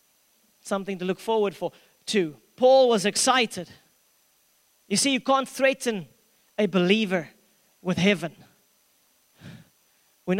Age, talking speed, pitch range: 30-49, 110 wpm, 200-270 Hz